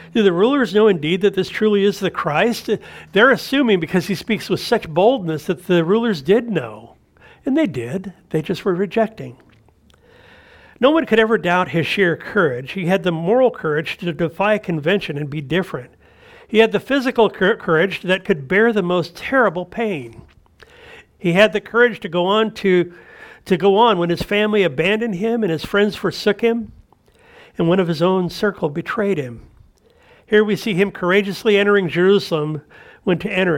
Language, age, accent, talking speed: English, 50-69, American, 180 wpm